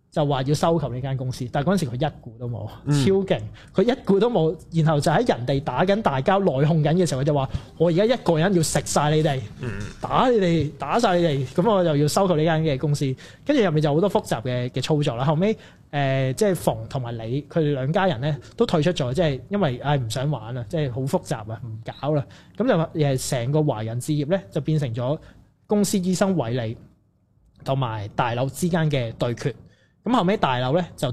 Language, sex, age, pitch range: Chinese, male, 20-39, 130-165 Hz